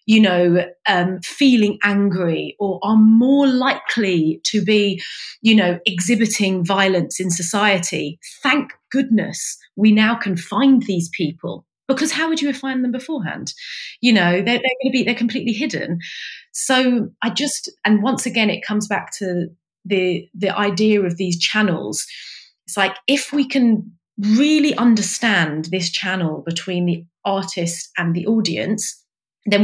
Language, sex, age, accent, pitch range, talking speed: English, female, 30-49, British, 180-225 Hz, 145 wpm